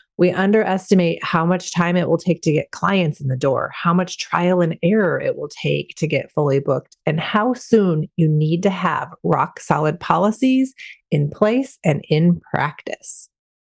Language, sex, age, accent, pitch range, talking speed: English, female, 30-49, American, 160-215 Hz, 180 wpm